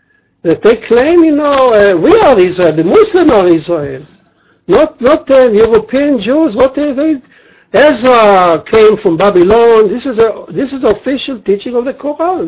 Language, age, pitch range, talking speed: English, 60-79, 160-255 Hz, 175 wpm